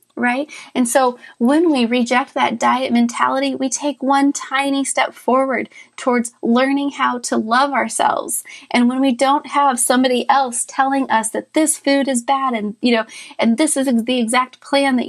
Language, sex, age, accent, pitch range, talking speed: English, female, 30-49, American, 245-290 Hz, 180 wpm